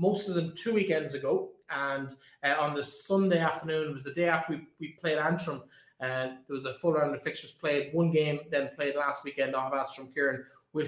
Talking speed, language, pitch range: 225 wpm, English, 145-165 Hz